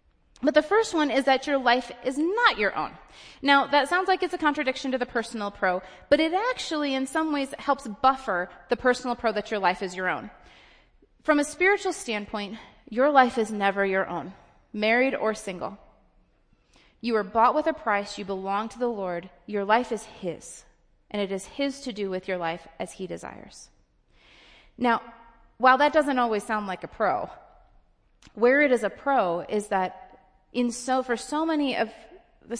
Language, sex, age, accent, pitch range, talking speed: English, female, 30-49, American, 200-275 Hz, 190 wpm